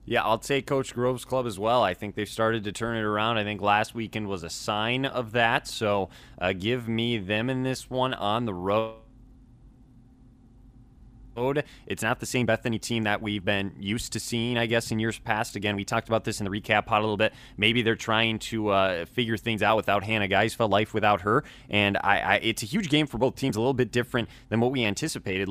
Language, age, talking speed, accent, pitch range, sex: English, 20-39, 230 wpm, American, 100-120 Hz, male